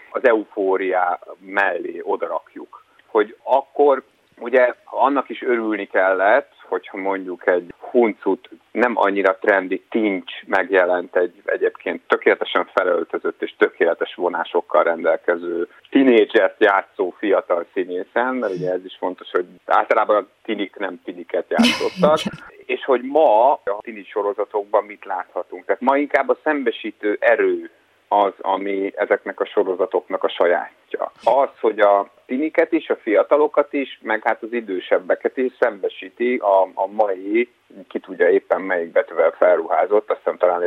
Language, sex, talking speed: Hungarian, male, 135 wpm